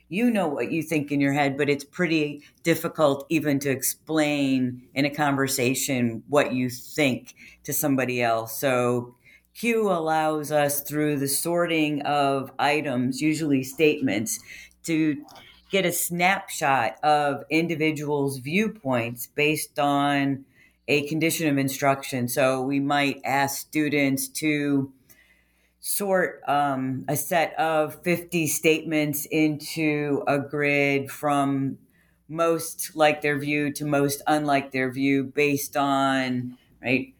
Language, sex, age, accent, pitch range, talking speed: English, female, 40-59, American, 135-155 Hz, 125 wpm